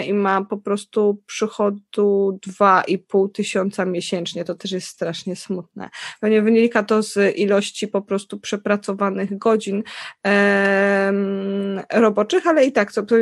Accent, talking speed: native, 125 wpm